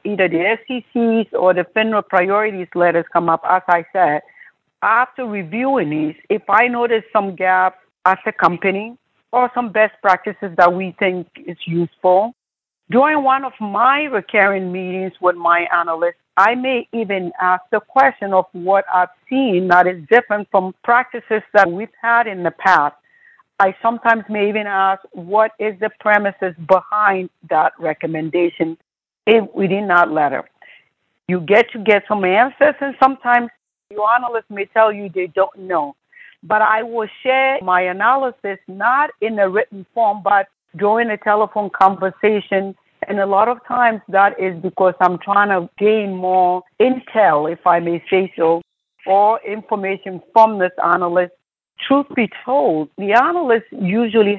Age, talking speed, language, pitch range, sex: 60-79, 155 wpm, English, 180-225 Hz, female